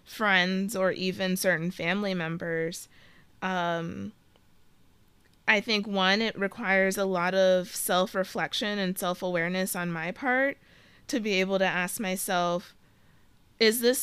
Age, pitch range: 20-39, 180-210 Hz